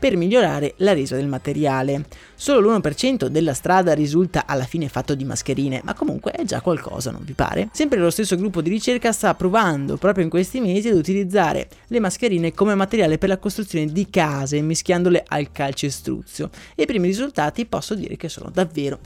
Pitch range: 150-200 Hz